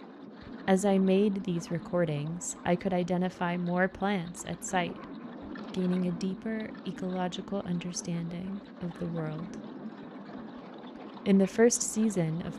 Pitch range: 175-220 Hz